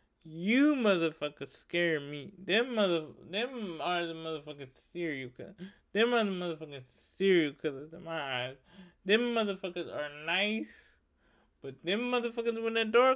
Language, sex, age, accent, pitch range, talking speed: English, male, 20-39, American, 140-205 Hz, 145 wpm